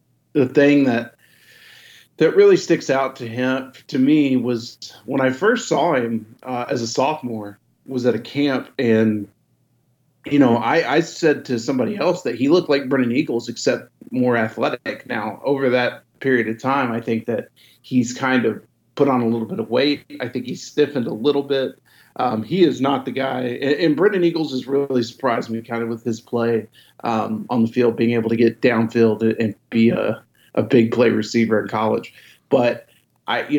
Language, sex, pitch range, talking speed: English, male, 115-135 Hz, 195 wpm